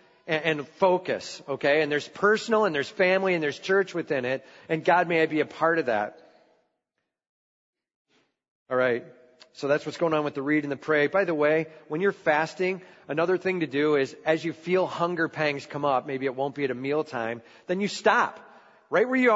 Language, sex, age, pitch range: English, male, 40-59, 145-210 Hz